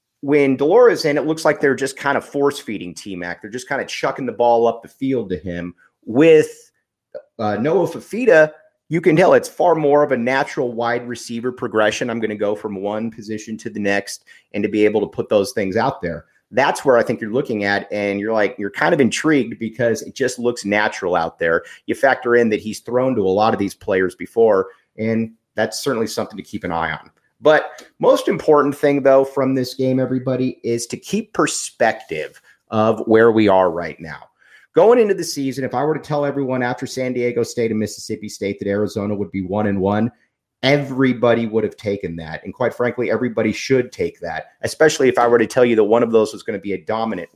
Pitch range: 105-135 Hz